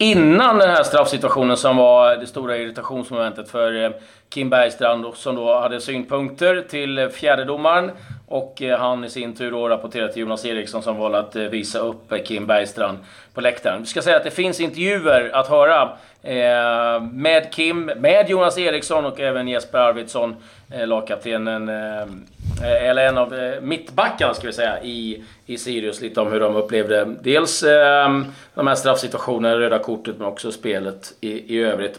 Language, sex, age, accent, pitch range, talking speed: Swedish, male, 30-49, native, 115-140 Hz, 165 wpm